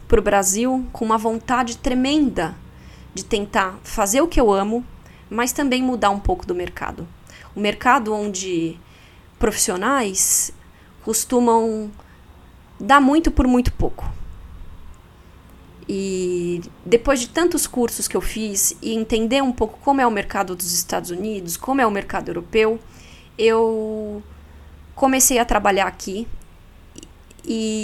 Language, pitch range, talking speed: Portuguese, 195-250 Hz, 135 wpm